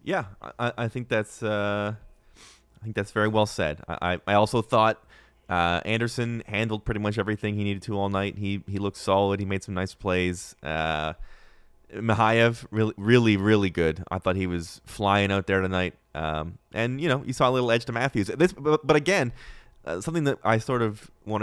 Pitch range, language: 90-110 Hz, English